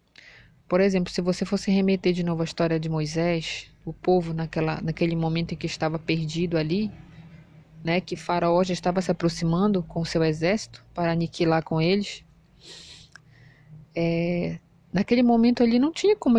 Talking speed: 160 wpm